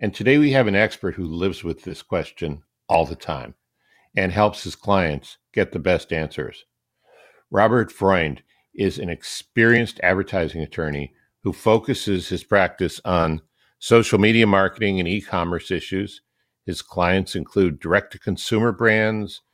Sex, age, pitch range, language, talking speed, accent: male, 50-69, 85-105 Hz, English, 145 wpm, American